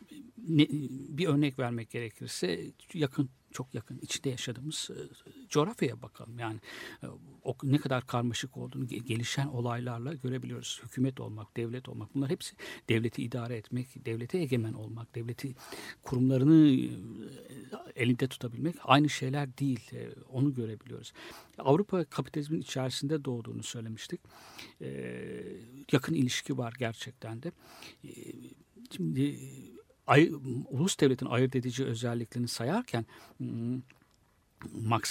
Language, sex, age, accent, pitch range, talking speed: Turkish, male, 60-79, native, 120-145 Hz, 100 wpm